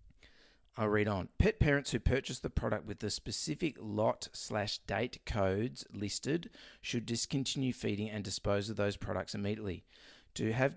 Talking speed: 155 wpm